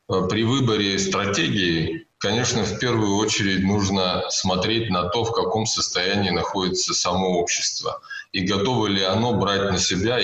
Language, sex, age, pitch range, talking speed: Russian, male, 20-39, 90-105 Hz, 140 wpm